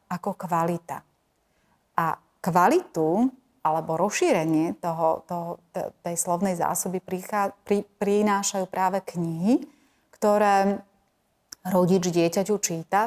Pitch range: 180-205 Hz